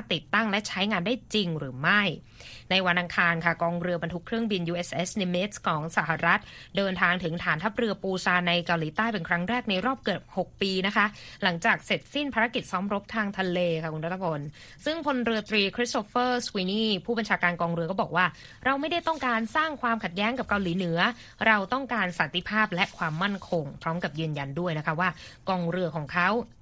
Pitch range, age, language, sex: 170-220 Hz, 20-39, Thai, female